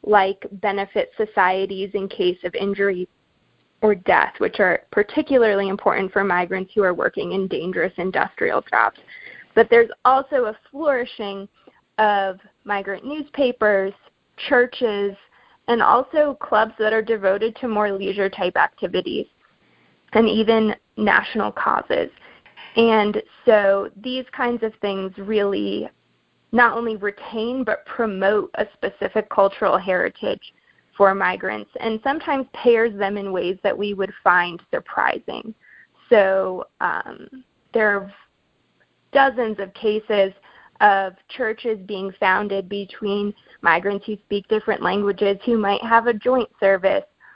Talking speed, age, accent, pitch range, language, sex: 125 wpm, 20-39, American, 195-235 Hz, English, female